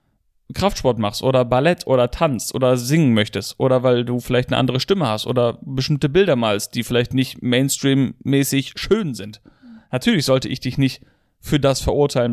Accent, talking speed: German, 170 wpm